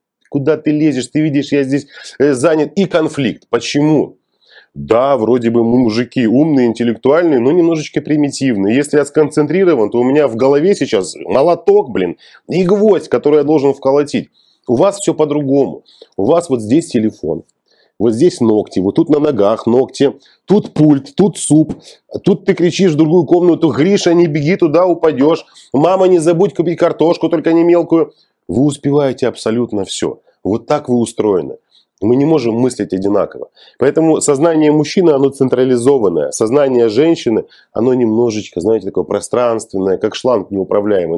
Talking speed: 155 wpm